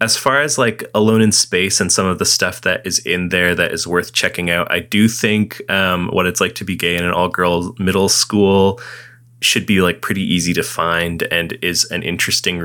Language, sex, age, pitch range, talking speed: English, male, 20-39, 85-110 Hz, 225 wpm